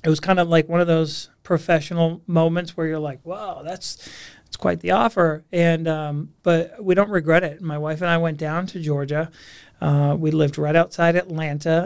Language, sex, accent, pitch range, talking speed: English, male, American, 150-175 Hz, 200 wpm